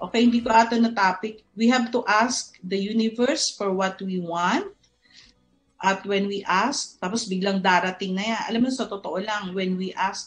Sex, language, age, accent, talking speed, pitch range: female, Filipino, 50-69, native, 185 wpm, 185-245 Hz